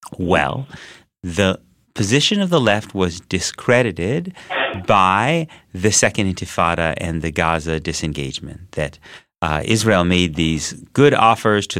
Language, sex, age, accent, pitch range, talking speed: English, male, 30-49, American, 90-130 Hz, 120 wpm